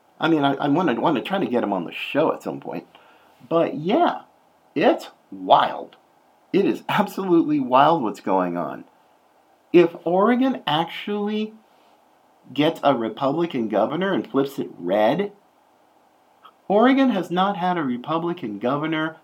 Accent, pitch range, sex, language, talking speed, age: American, 125-195 Hz, male, English, 145 wpm, 50-69